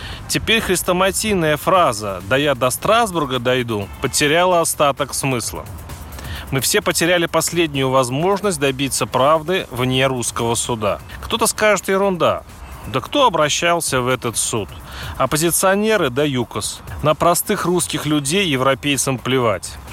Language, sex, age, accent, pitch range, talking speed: Russian, male, 30-49, native, 130-180 Hz, 115 wpm